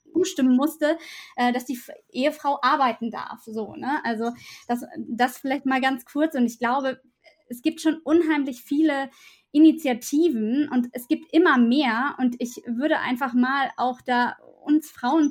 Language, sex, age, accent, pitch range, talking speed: German, female, 20-39, German, 245-290 Hz, 145 wpm